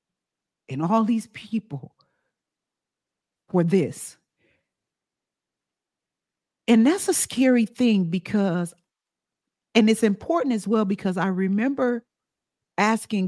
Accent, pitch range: American, 185-245 Hz